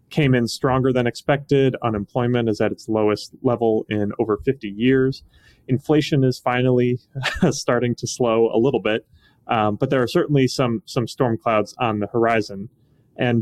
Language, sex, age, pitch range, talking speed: English, male, 30-49, 105-130 Hz, 165 wpm